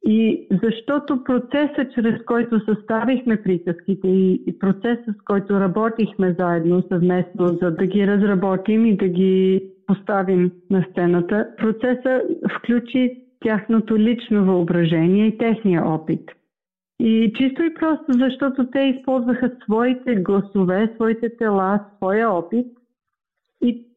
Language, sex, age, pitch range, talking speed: Bulgarian, female, 50-69, 190-230 Hz, 115 wpm